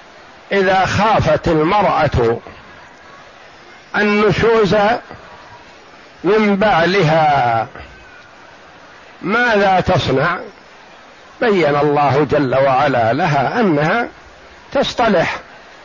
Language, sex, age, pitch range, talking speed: Arabic, male, 50-69, 185-215 Hz, 55 wpm